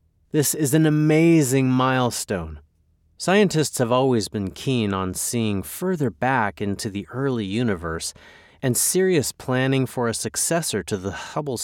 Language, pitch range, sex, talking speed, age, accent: English, 95-135 Hz, male, 140 wpm, 30-49, American